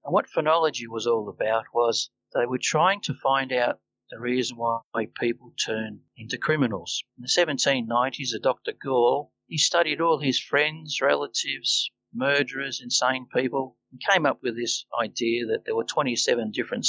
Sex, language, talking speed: male, English, 165 wpm